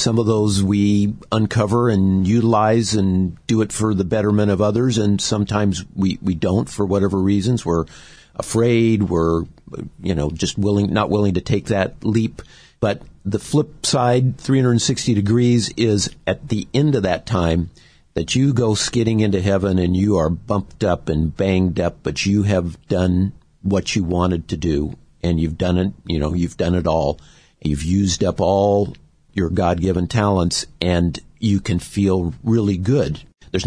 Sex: male